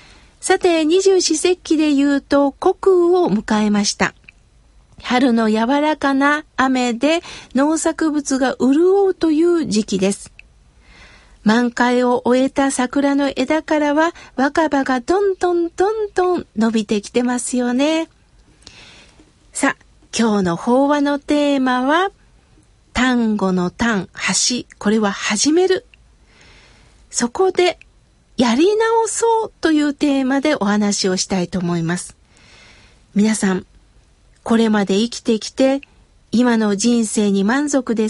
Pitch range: 230-325 Hz